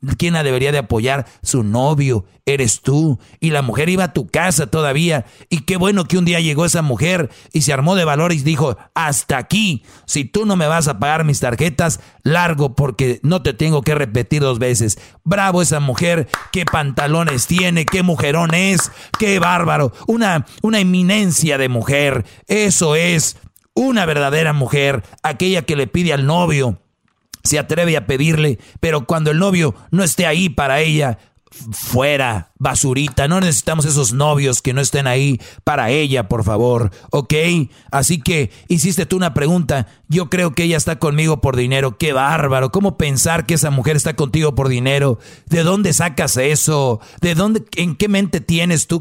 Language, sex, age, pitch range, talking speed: Spanish, male, 50-69, 135-170 Hz, 175 wpm